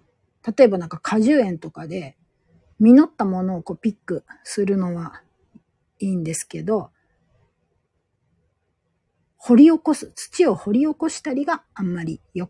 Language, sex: Japanese, female